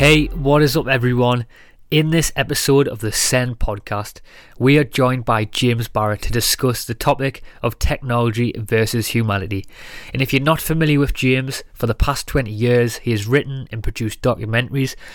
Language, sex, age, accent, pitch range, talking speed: English, male, 20-39, British, 110-130 Hz, 175 wpm